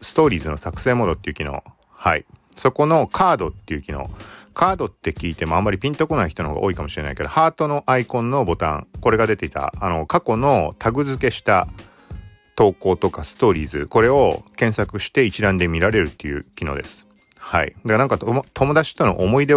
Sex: male